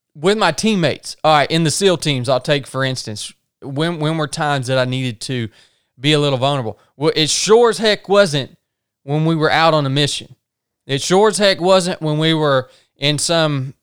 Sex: male